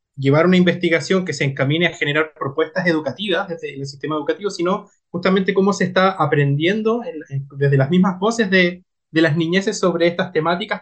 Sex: male